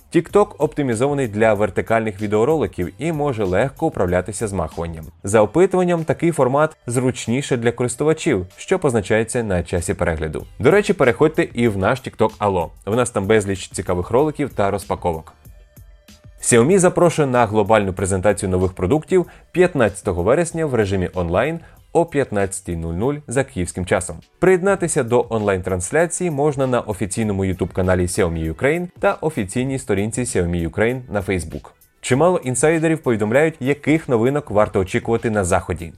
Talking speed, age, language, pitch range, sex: 135 wpm, 20-39, Ukrainian, 100-150 Hz, male